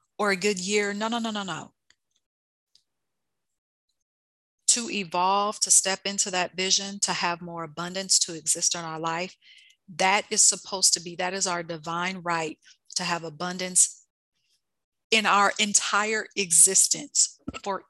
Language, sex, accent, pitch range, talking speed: English, female, American, 165-210 Hz, 145 wpm